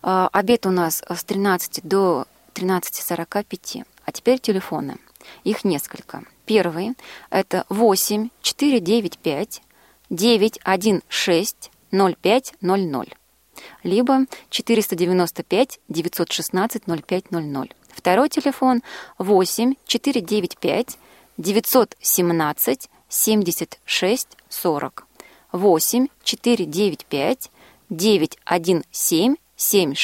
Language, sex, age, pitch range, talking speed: Russian, female, 20-39, 175-225 Hz, 50 wpm